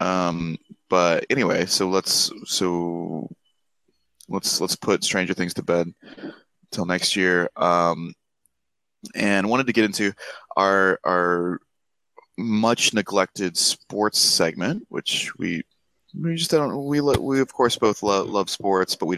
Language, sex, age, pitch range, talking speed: English, male, 20-39, 85-110 Hz, 135 wpm